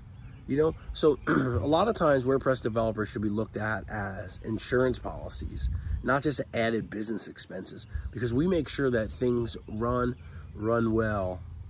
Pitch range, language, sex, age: 100-130 Hz, English, male, 30-49